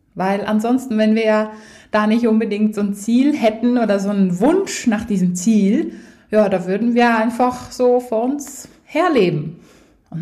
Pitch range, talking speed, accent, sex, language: 185-230 Hz, 170 wpm, German, female, German